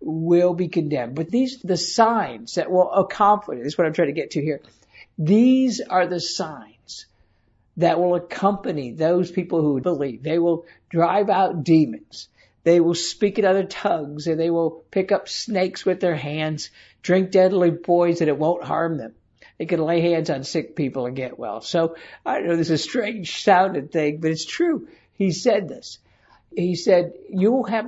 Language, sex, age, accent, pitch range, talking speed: English, male, 60-79, American, 160-190 Hz, 190 wpm